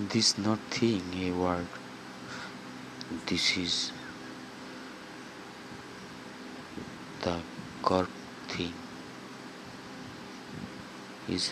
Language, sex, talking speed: Bengali, male, 55 wpm